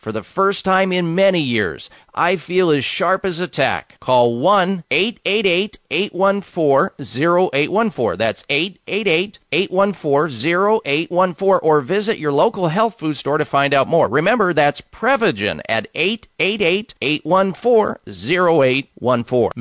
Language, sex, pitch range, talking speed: English, male, 140-190 Hz, 105 wpm